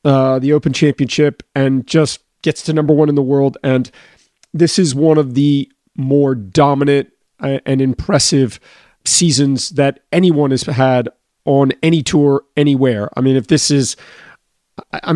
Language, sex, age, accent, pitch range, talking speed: English, male, 40-59, American, 130-150 Hz, 150 wpm